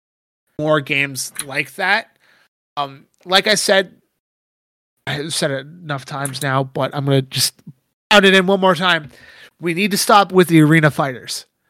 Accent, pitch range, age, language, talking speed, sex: American, 150-195 Hz, 30-49, English, 175 wpm, male